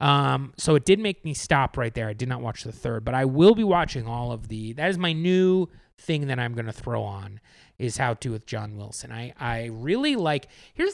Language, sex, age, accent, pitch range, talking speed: English, male, 30-49, American, 120-160 Hz, 240 wpm